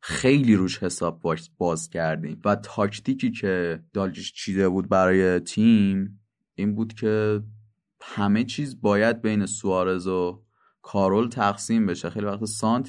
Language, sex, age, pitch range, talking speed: Persian, male, 30-49, 90-110 Hz, 130 wpm